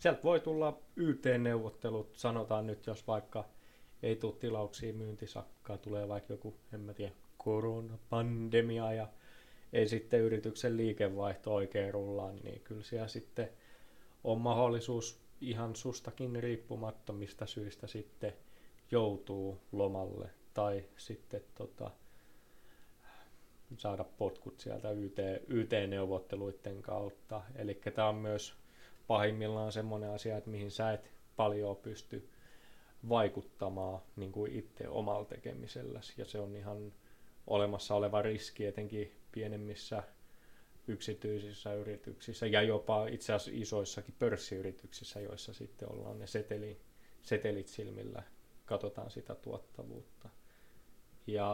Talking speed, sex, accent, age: 110 wpm, male, native, 20-39